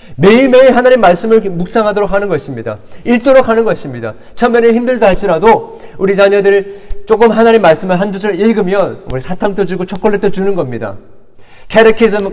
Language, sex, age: Korean, male, 40-59